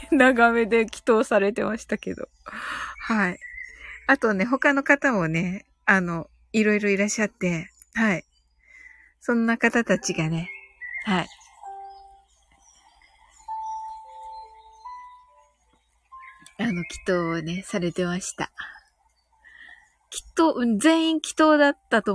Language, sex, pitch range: Japanese, female, 205-320 Hz